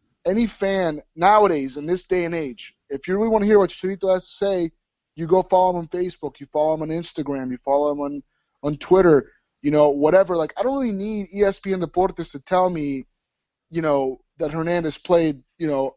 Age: 30-49